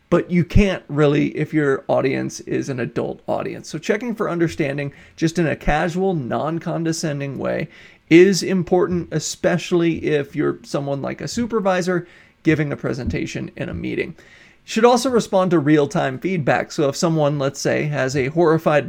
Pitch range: 145-180 Hz